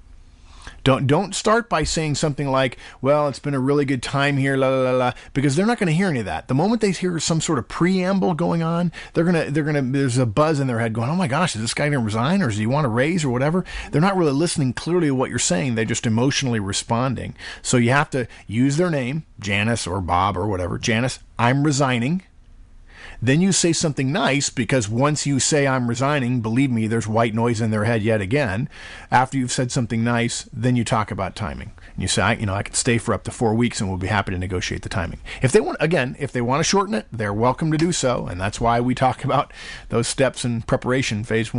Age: 40-59